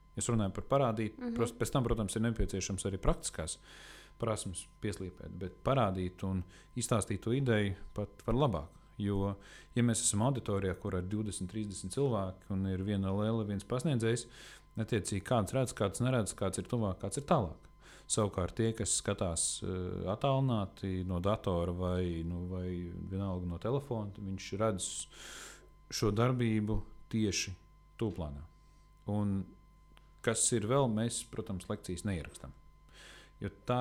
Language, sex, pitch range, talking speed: English, male, 95-120 Hz, 140 wpm